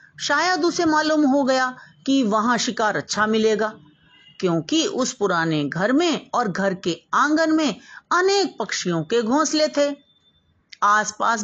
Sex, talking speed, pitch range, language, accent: female, 135 wpm, 190-275 Hz, Hindi, native